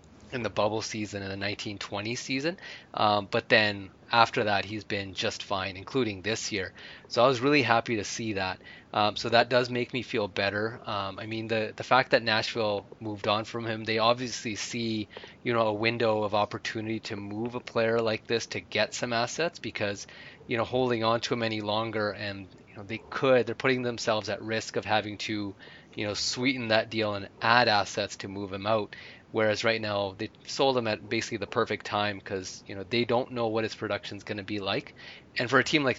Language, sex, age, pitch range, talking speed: English, male, 20-39, 100-115 Hz, 220 wpm